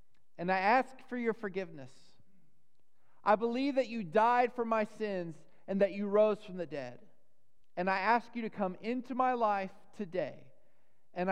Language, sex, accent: English, male, American